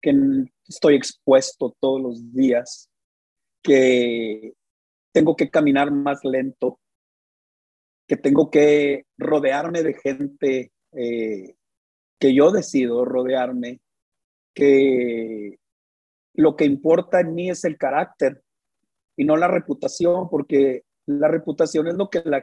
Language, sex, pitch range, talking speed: English, male, 125-170 Hz, 115 wpm